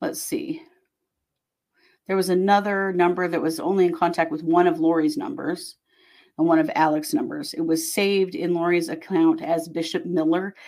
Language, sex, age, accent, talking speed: English, female, 40-59, American, 170 wpm